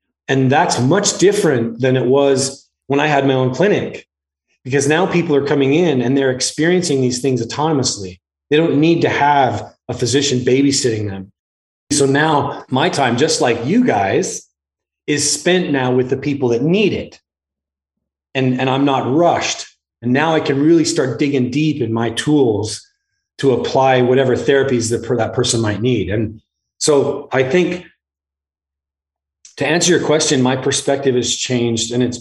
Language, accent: English, American